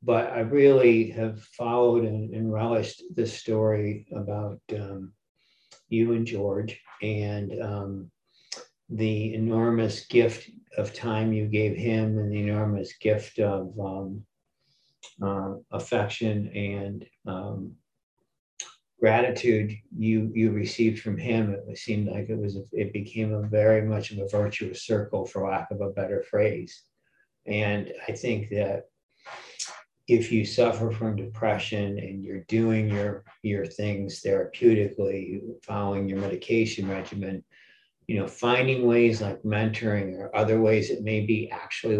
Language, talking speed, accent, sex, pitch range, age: English, 135 wpm, American, male, 100-115 Hz, 50-69